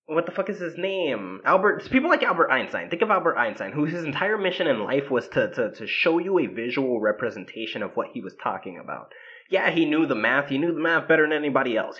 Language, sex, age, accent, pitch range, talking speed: English, male, 20-39, American, 150-215 Hz, 240 wpm